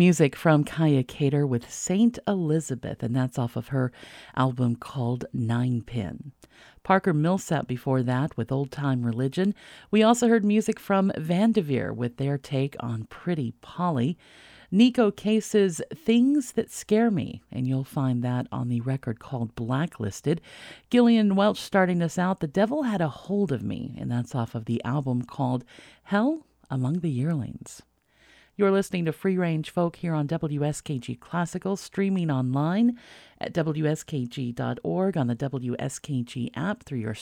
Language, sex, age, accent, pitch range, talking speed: English, female, 50-69, American, 130-195 Hz, 150 wpm